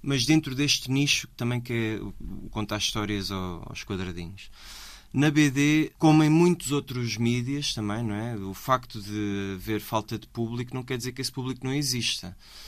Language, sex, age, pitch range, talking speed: Portuguese, male, 20-39, 110-145 Hz, 170 wpm